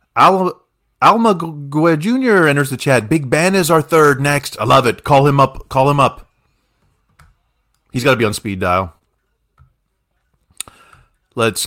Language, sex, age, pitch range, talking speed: English, male, 30-49, 100-145 Hz, 155 wpm